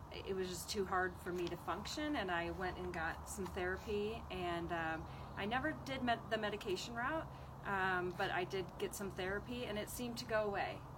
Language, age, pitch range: English, 30-49, 175-210 Hz